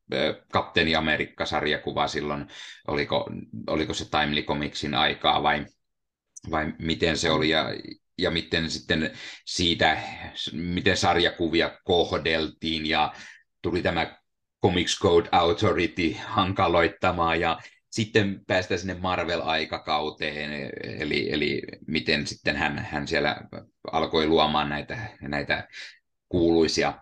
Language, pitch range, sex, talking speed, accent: Finnish, 75-95 Hz, male, 100 wpm, native